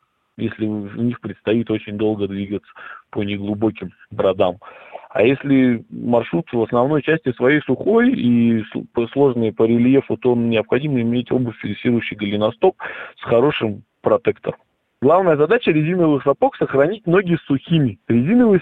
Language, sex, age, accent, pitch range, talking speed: Russian, male, 20-39, native, 115-145 Hz, 130 wpm